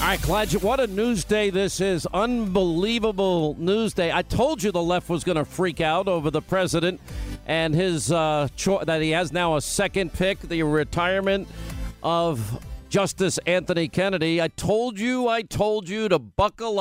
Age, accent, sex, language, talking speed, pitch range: 50-69, American, male, English, 180 wpm, 155-200 Hz